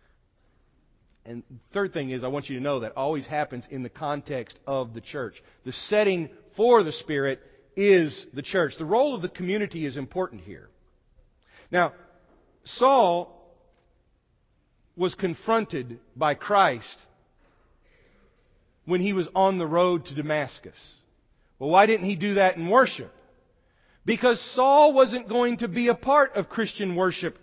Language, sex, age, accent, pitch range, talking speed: English, male, 40-59, American, 185-240 Hz, 150 wpm